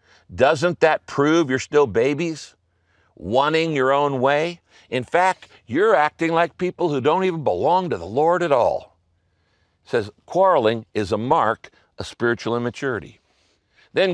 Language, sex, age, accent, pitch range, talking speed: English, male, 60-79, American, 105-160 Hz, 150 wpm